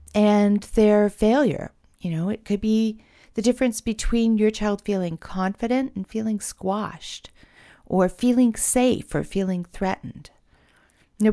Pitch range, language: 165-220 Hz, English